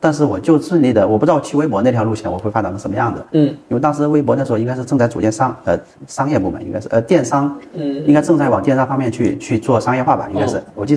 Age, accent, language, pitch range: 40-59, native, Chinese, 95-130 Hz